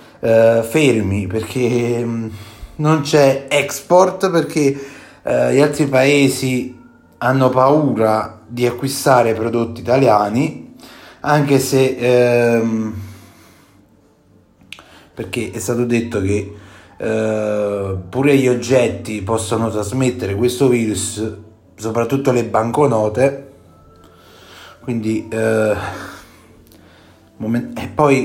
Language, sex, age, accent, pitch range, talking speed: Italian, male, 30-49, native, 110-135 Hz, 80 wpm